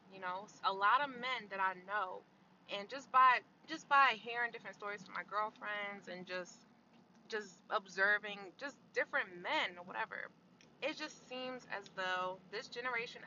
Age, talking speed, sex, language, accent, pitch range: 20-39, 165 wpm, female, English, American, 195-255 Hz